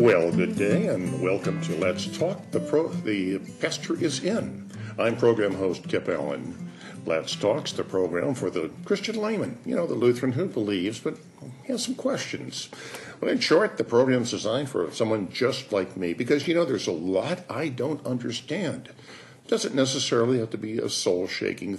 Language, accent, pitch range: English, American, 100-160 Hz